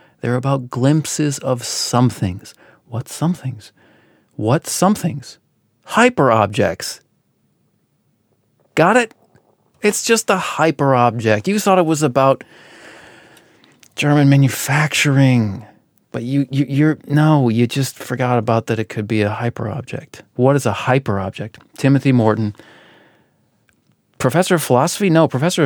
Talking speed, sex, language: 125 wpm, male, English